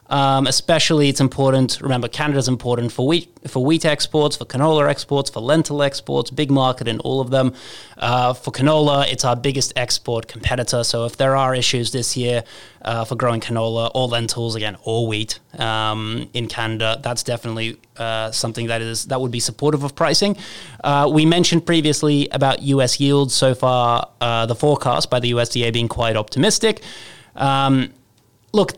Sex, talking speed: male, 175 wpm